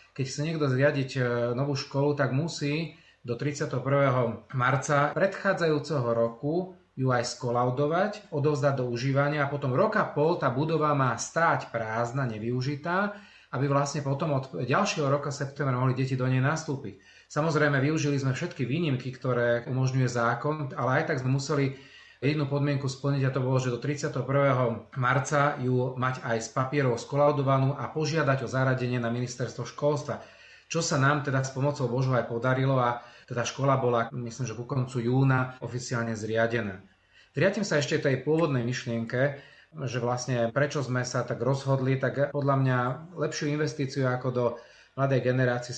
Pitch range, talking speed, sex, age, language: 125-145 Hz, 155 wpm, male, 30-49, Slovak